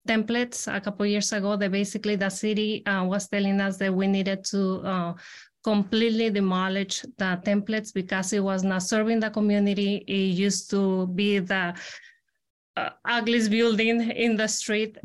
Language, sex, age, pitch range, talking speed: English, female, 20-39, 200-235 Hz, 160 wpm